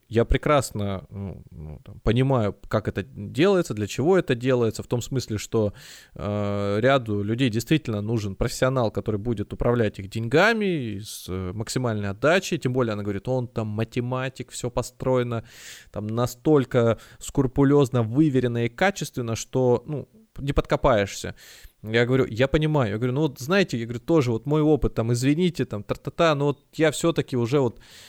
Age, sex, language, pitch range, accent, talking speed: 20-39, male, Russian, 115-160 Hz, native, 160 wpm